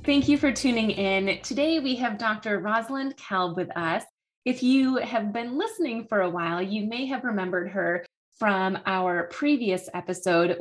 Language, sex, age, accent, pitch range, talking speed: English, female, 20-39, American, 180-235 Hz, 170 wpm